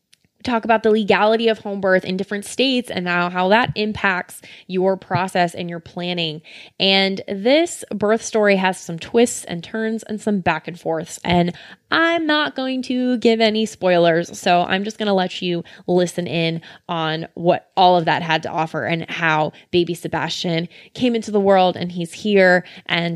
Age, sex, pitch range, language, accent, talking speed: 20-39, female, 170-215 Hz, English, American, 185 wpm